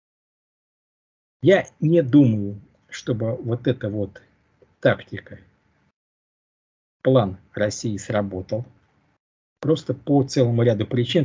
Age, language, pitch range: 50-69, Russian, 105-135 Hz